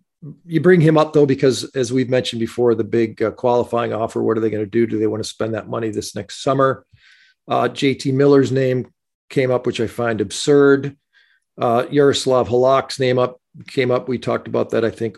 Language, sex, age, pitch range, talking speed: English, male, 40-59, 115-145 Hz, 215 wpm